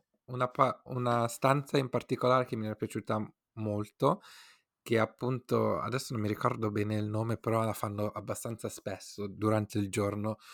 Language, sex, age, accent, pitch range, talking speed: Italian, male, 20-39, native, 105-115 Hz, 165 wpm